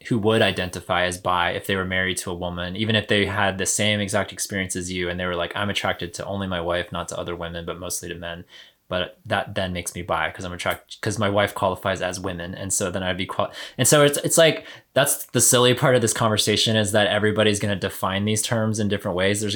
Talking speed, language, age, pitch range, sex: 255 wpm, English, 20-39, 90-105 Hz, male